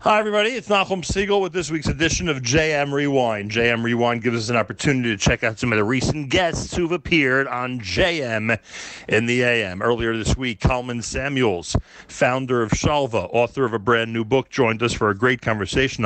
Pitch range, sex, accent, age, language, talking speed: 105-145 Hz, male, American, 40-59, English, 195 wpm